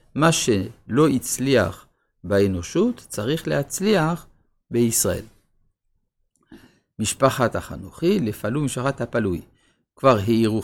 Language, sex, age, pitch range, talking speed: Hebrew, male, 50-69, 105-140 Hz, 80 wpm